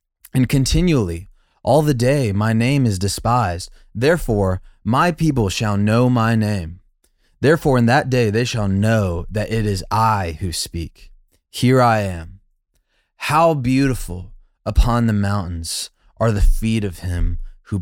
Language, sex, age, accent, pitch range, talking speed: English, male, 20-39, American, 95-125 Hz, 145 wpm